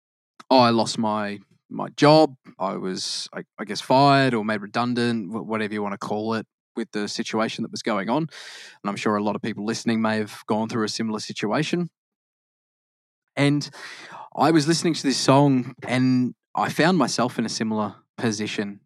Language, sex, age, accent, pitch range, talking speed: English, male, 20-39, Australian, 105-140 Hz, 180 wpm